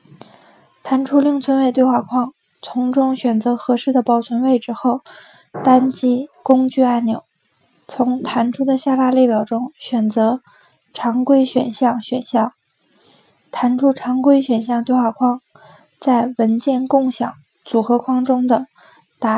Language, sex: Chinese, female